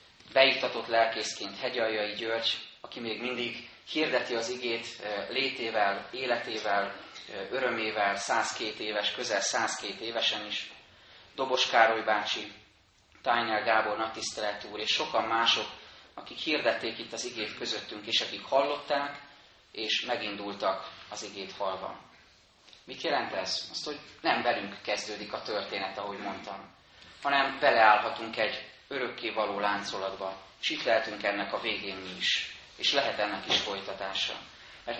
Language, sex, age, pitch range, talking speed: Hungarian, male, 30-49, 100-120 Hz, 125 wpm